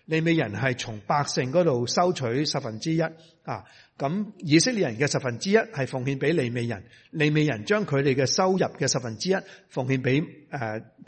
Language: Chinese